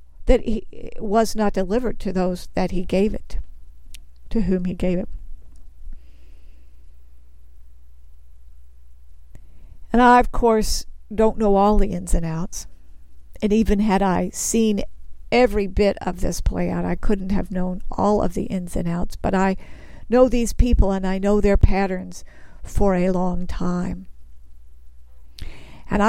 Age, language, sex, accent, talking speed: 60-79, English, female, American, 145 wpm